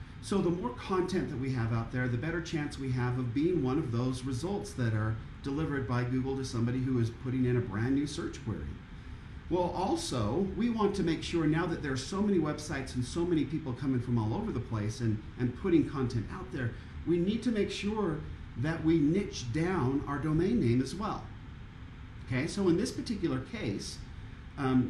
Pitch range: 125-175 Hz